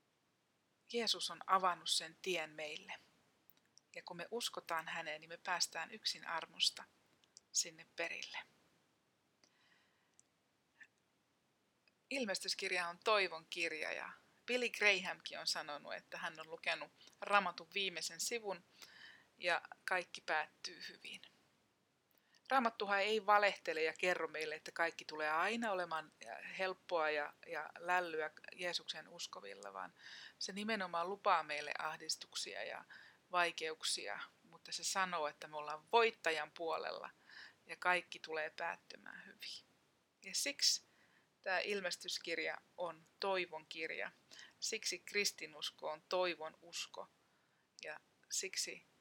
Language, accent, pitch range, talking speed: Finnish, native, 160-195 Hz, 110 wpm